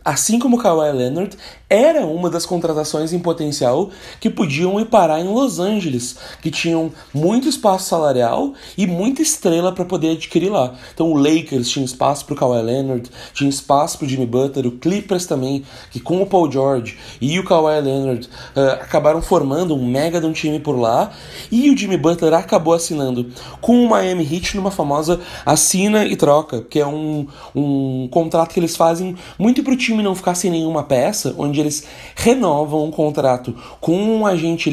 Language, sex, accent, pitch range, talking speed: Portuguese, male, Brazilian, 145-190 Hz, 180 wpm